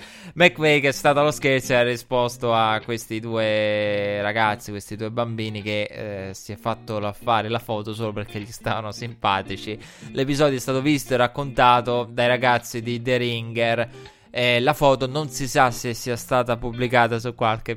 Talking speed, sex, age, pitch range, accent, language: 175 wpm, male, 20-39, 110-130 Hz, native, Italian